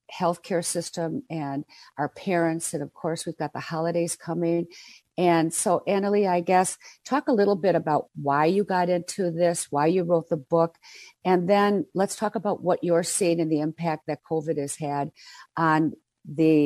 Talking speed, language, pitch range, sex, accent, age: 180 wpm, English, 155-180 Hz, female, American, 50-69